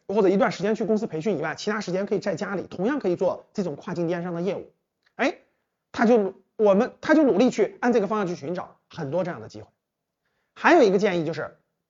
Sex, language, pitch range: male, Chinese, 180-245 Hz